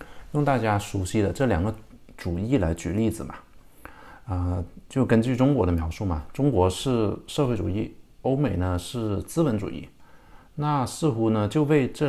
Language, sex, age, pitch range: Chinese, male, 50-69, 95-140 Hz